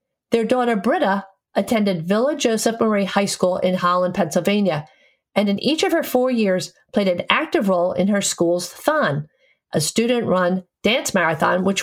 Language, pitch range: English, 180-230 Hz